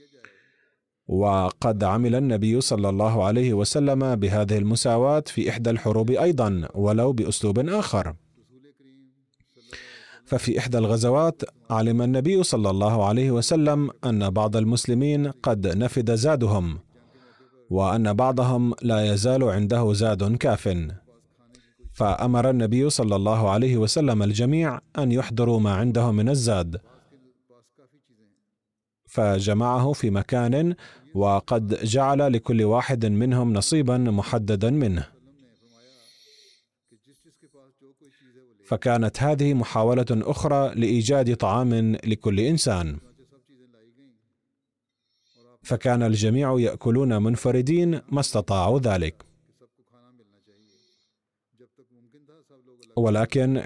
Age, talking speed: 40-59, 85 wpm